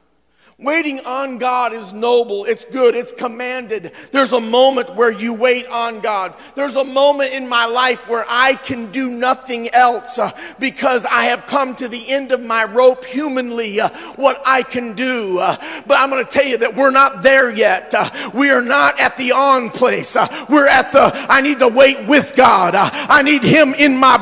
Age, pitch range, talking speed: 50-69, 250-305 Hz, 200 wpm